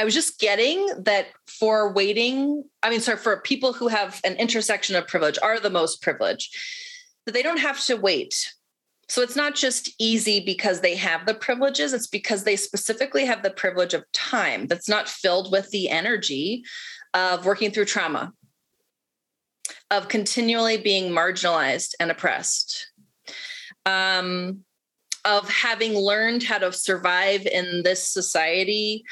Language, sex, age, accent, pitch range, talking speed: English, female, 30-49, American, 185-240 Hz, 150 wpm